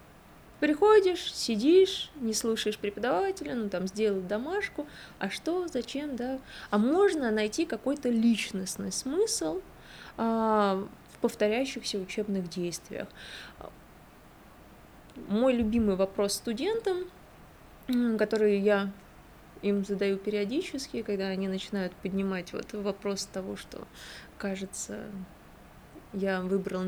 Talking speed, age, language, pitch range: 100 wpm, 20-39, Russian, 200-265 Hz